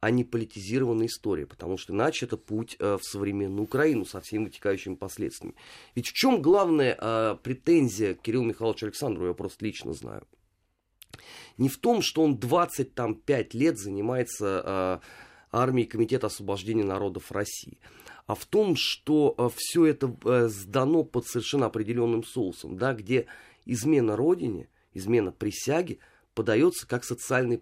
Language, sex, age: Russian, male, 30-49